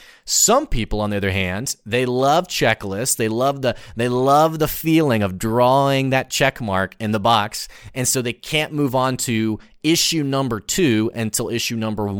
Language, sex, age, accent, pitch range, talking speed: English, male, 30-49, American, 100-130 Hz, 180 wpm